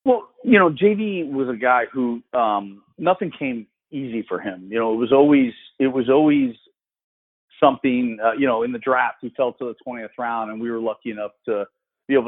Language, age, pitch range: English, 40-59, 120-165 Hz